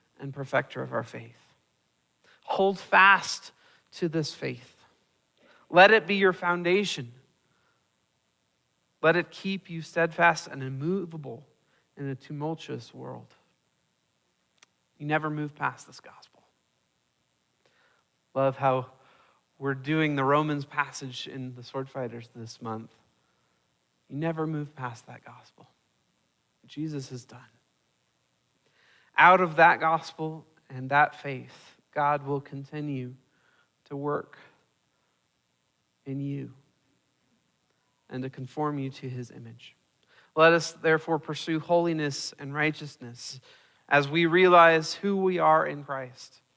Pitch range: 130-165 Hz